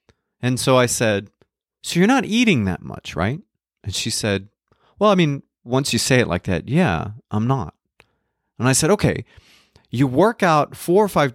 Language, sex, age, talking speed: English, male, 30-49, 190 wpm